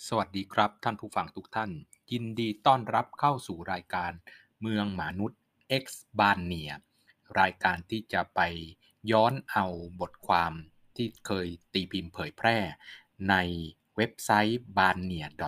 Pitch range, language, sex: 95-125 Hz, Thai, male